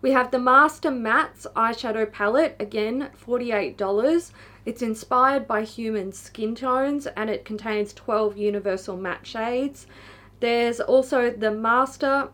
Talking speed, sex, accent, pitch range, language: 125 wpm, female, Australian, 205-245 Hz, English